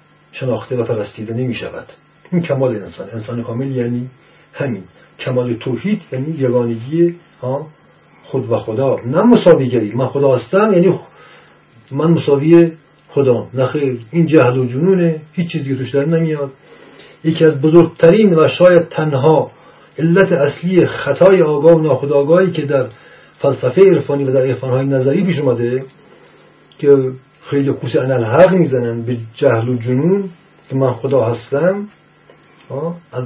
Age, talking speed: 50-69, 140 wpm